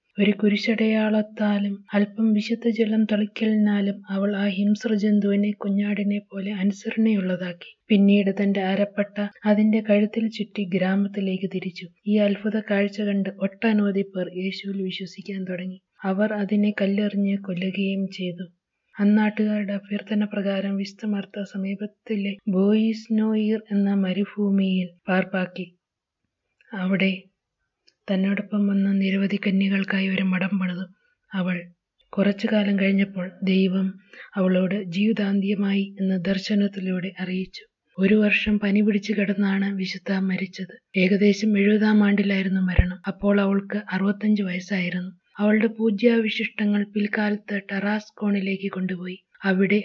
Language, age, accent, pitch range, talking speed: Malayalam, 30-49, native, 190-210 Hz, 95 wpm